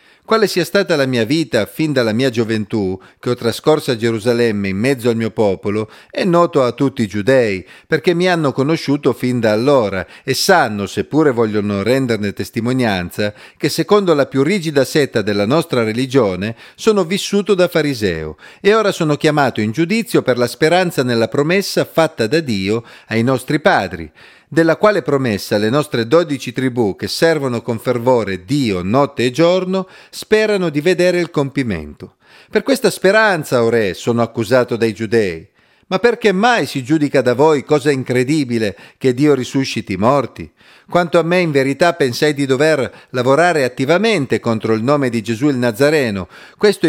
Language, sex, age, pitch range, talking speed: Italian, male, 40-59, 115-165 Hz, 170 wpm